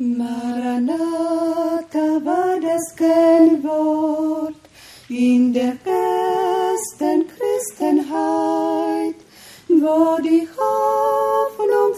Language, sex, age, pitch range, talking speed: Polish, female, 30-49, 240-355 Hz, 55 wpm